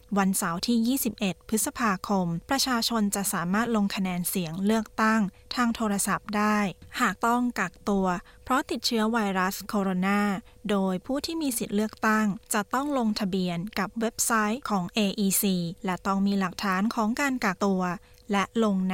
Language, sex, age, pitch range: Thai, female, 20-39, 195-230 Hz